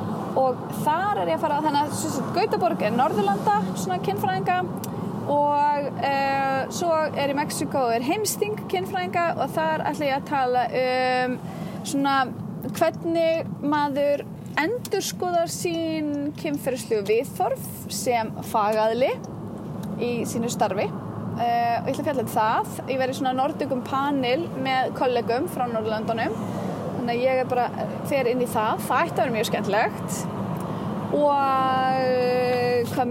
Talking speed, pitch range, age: 130 wpm, 235-295 Hz, 20-39